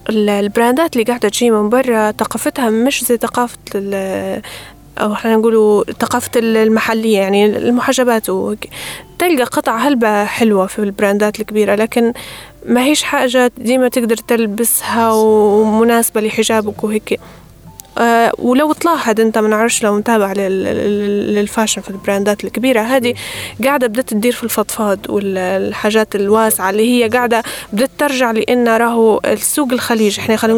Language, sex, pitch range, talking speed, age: Arabic, female, 210-250 Hz, 130 wpm, 10-29